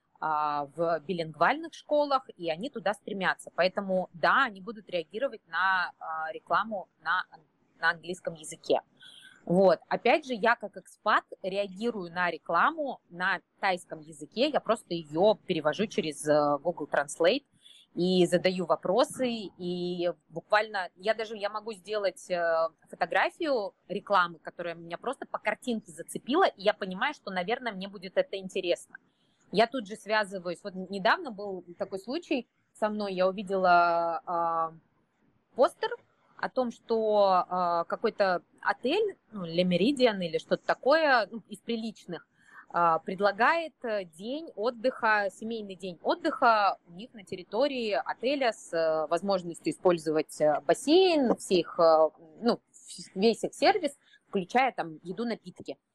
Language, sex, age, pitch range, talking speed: Russian, female, 20-39, 175-235 Hz, 125 wpm